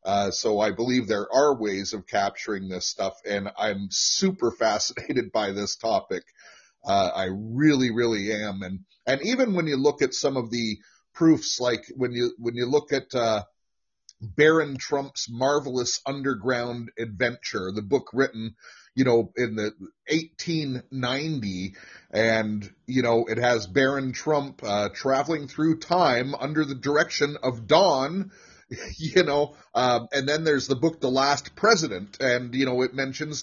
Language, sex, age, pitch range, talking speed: English, male, 30-49, 115-150 Hz, 160 wpm